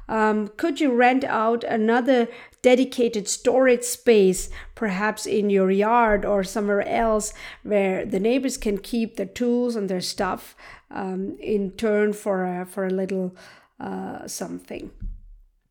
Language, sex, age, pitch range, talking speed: English, female, 50-69, 205-245 Hz, 135 wpm